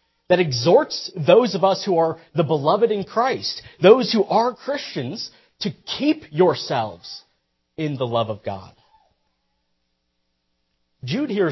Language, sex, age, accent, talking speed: English, male, 40-59, American, 130 wpm